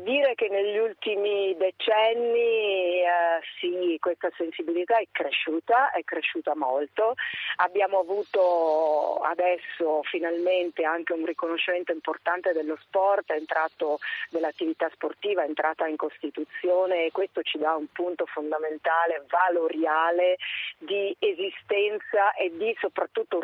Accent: native